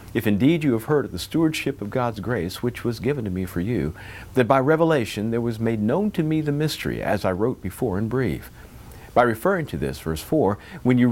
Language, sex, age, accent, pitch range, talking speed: English, male, 50-69, American, 105-155 Hz, 230 wpm